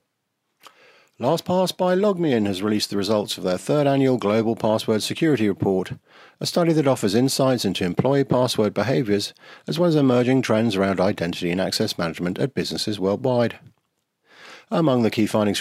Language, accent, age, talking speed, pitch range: English, British, 50-69, 160 wpm, 100-135 Hz